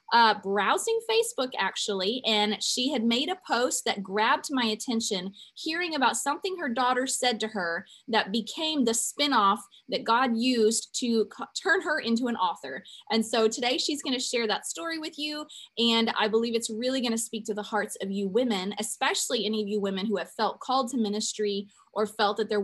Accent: American